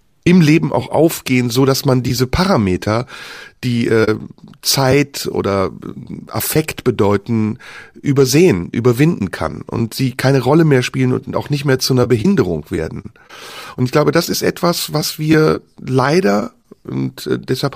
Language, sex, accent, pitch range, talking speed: German, male, German, 115-150 Hz, 140 wpm